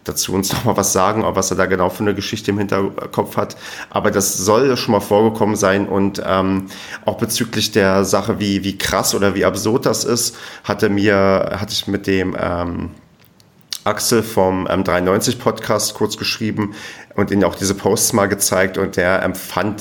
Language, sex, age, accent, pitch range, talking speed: German, male, 30-49, German, 95-105 Hz, 180 wpm